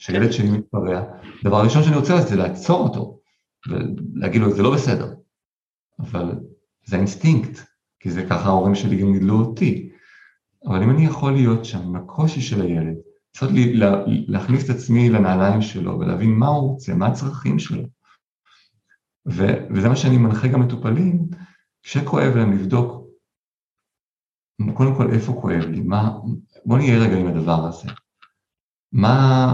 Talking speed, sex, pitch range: 150 wpm, male, 95-130 Hz